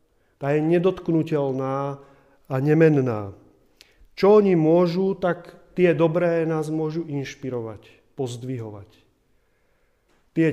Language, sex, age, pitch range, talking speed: Czech, male, 40-59, 135-165 Hz, 90 wpm